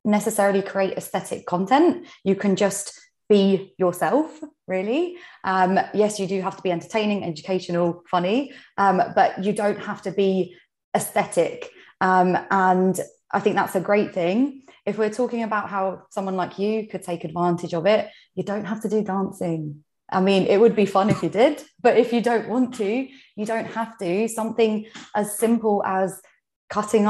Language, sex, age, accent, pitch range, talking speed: English, female, 20-39, British, 180-215 Hz, 175 wpm